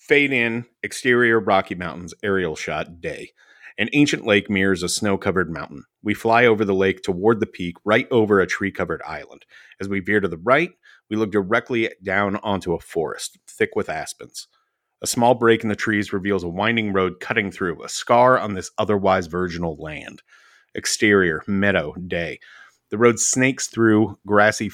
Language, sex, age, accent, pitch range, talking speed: English, male, 30-49, American, 95-115 Hz, 170 wpm